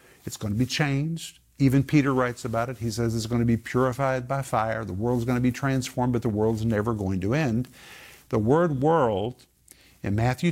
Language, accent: English, American